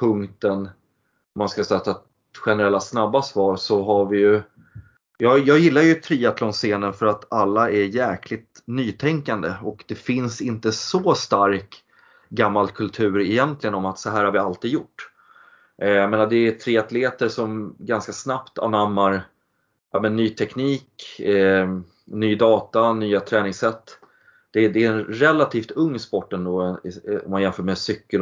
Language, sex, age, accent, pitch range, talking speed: Swedish, male, 30-49, native, 100-125 Hz, 150 wpm